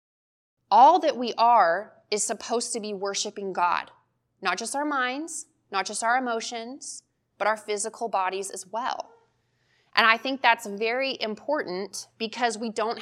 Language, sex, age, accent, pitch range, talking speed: English, female, 20-39, American, 195-250 Hz, 150 wpm